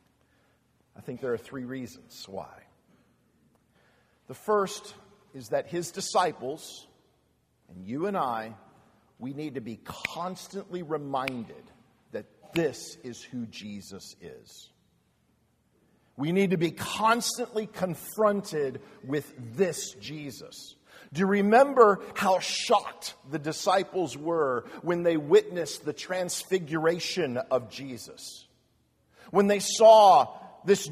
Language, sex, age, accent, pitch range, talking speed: English, male, 50-69, American, 145-205 Hz, 110 wpm